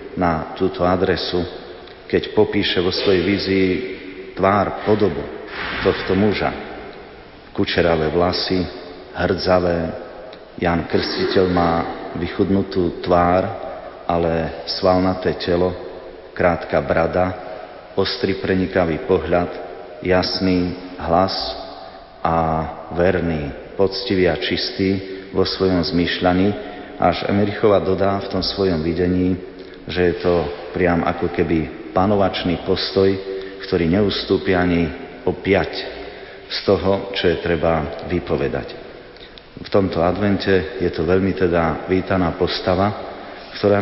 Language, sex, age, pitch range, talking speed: Slovak, male, 40-59, 85-95 Hz, 100 wpm